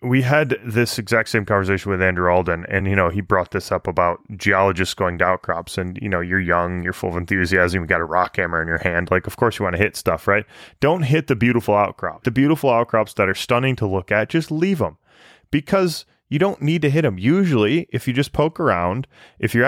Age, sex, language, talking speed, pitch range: 20-39, male, English, 240 wpm, 95-130 Hz